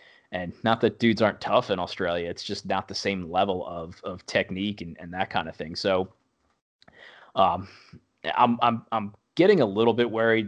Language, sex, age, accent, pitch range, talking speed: English, male, 20-39, American, 100-115 Hz, 190 wpm